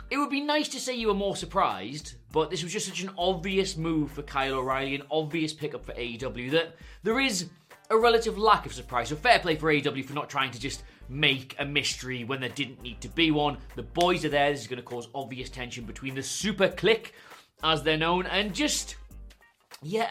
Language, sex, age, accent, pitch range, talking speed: English, male, 30-49, British, 135-175 Hz, 225 wpm